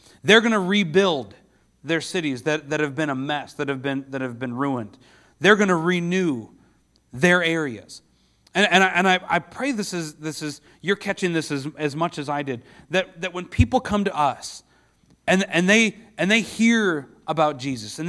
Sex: male